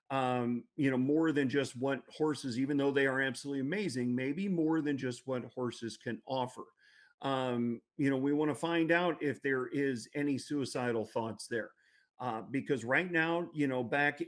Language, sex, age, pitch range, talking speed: English, male, 40-59, 125-145 Hz, 185 wpm